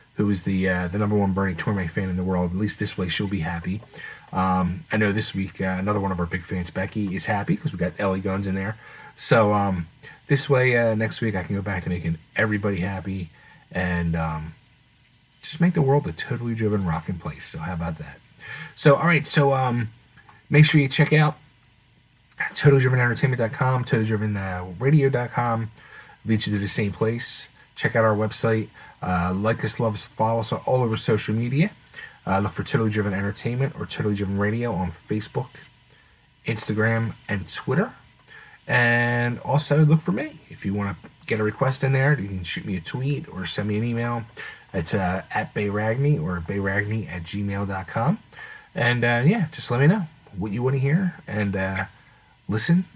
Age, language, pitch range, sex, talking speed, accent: 30-49, English, 100-140 Hz, male, 190 wpm, American